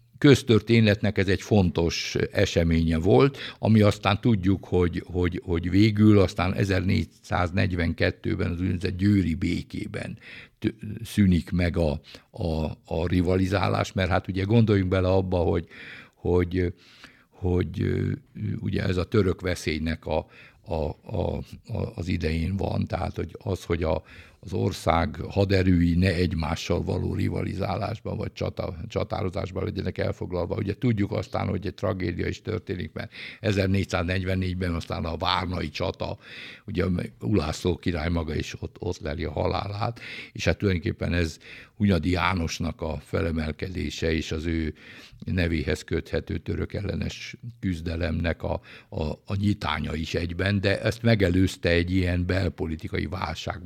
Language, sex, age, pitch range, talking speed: Hungarian, male, 60-79, 85-105 Hz, 130 wpm